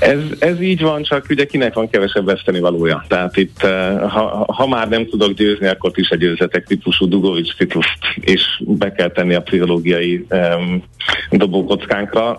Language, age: Hungarian, 50-69